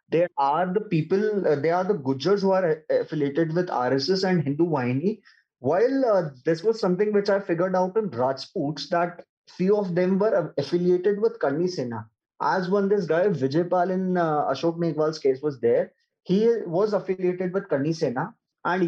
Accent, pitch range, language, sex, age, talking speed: Indian, 155-195 Hz, English, male, 20-39, 180 wpm